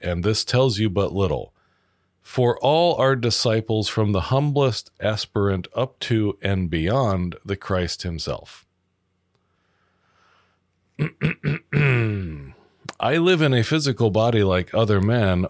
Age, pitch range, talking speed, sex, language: 40-59, 90-120 Hz, 115 wpm, male, English